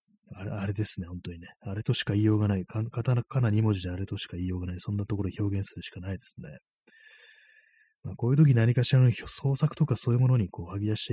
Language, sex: Japanese, male